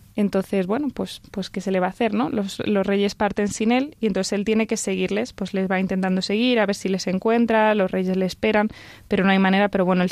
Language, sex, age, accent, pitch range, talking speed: Spanish, female, 20-39, Spanish, 195-230 Hz, 260 wpm